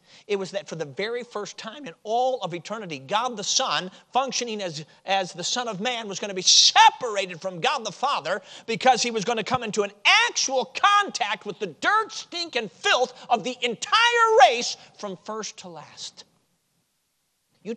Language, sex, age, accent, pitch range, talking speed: English, male, 50-69, American, 190-280 Hz, 190 wpm